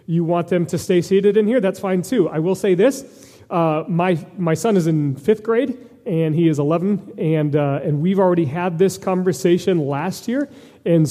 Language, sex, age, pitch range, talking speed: English, male, 40-59, 160-195 Hz, 205 wpm